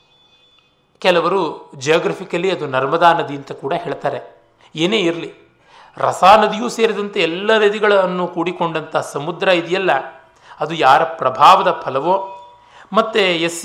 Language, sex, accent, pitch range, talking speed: Kannada, male, native, 140-190 Hz, 100 wpm